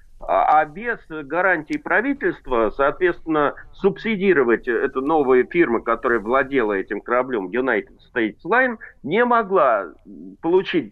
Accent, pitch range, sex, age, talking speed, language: native, 145-235 Hz, male, 50-69, 105 wpm, Russian